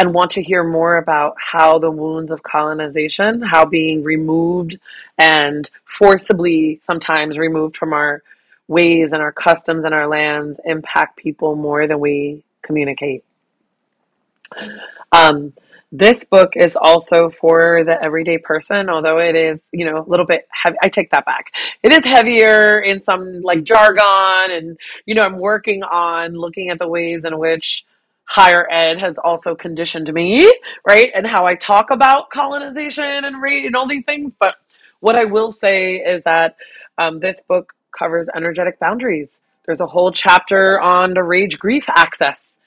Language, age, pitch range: English, 30-49, 160-190 Hz